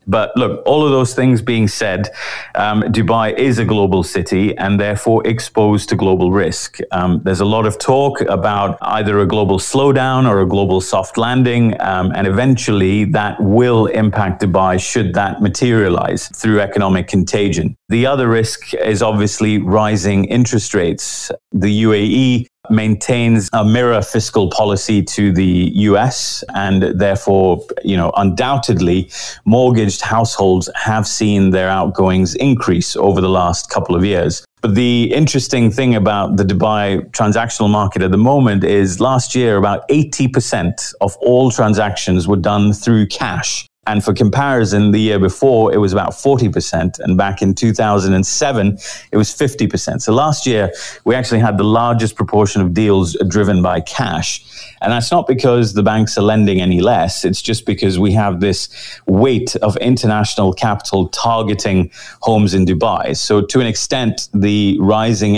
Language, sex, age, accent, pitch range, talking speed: English, male, 30-49, British, 95-115 Hz, 155 wpm